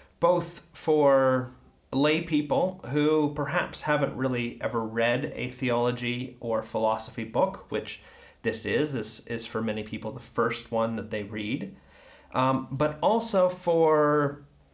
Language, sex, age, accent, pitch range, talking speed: English, male, 30-49, American, 115-165 Hz, 135 wpm